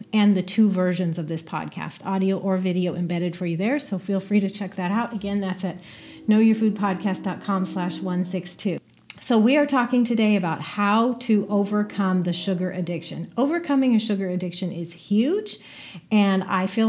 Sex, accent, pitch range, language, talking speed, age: female, American, 185-220 Hz, English, 170 wpm, 40-59